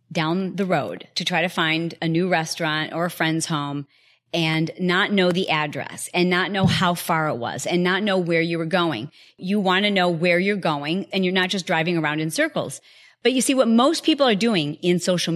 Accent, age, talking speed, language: American, 40-59, 225 wpm, English